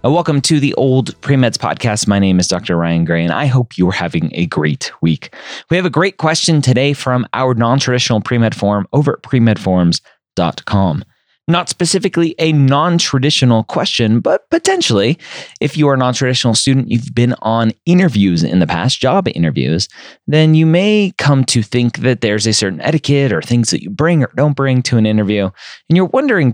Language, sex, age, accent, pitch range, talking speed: English, male, 30-49, American, 105-150 Hz, 190 wpm